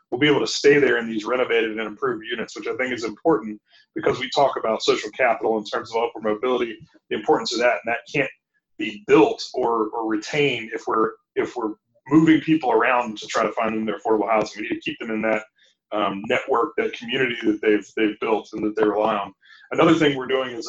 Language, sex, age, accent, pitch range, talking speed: English, male, 30-49, American, 110-160 Hz, 230 wpm